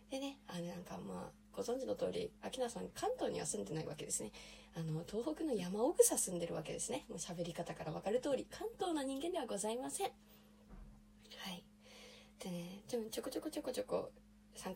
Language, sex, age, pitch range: Japanese, female, 20-39, 170-240 Hz